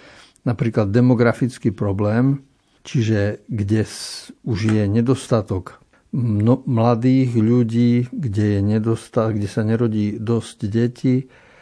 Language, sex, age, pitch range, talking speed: Slovak, male, 60-79, 105-125 Hz, 100 wpm